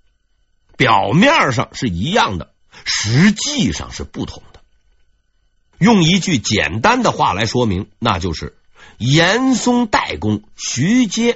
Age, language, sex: 50-69, Chinese, male